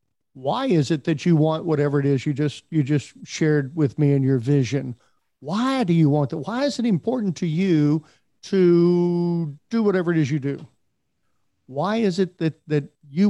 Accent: American